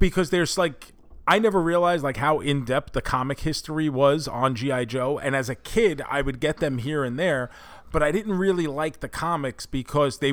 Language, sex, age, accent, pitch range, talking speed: English, male, 30-49, American, 125-150 Hz, 215 wpm